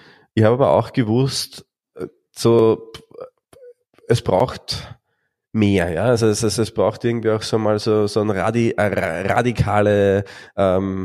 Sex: male